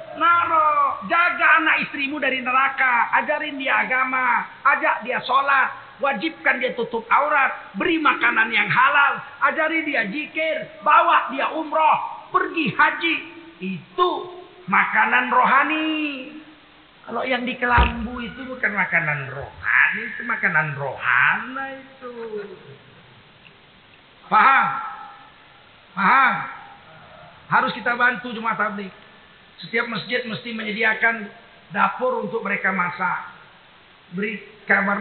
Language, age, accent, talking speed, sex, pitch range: Indonesian, 40-59, native, 105 wpm, male, 210-305 Hz